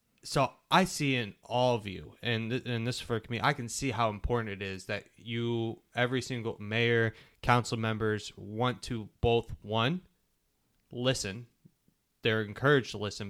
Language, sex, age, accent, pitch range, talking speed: English, male, 20-39, American, 105-125 Hz, 165 wpm